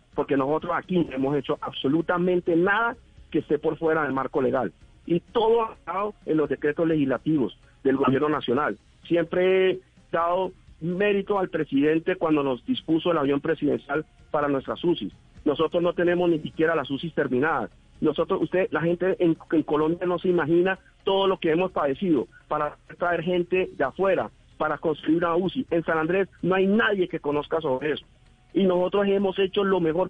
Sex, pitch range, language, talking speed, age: male, 160-195 Hz, Spanish, 175 wpm, 50-69